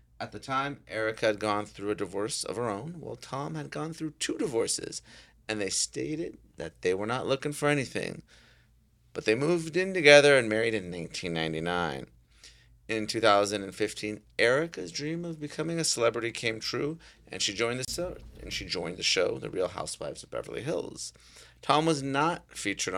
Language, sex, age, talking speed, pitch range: English, male, 30-49, 180 wpm, 85-140 Hz